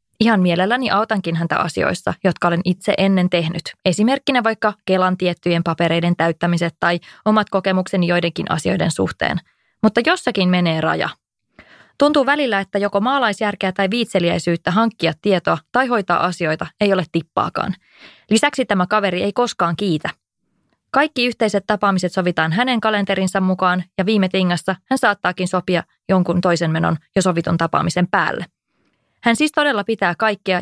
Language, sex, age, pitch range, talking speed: English, female, 20-39, 180-225 Hz, 140 wpm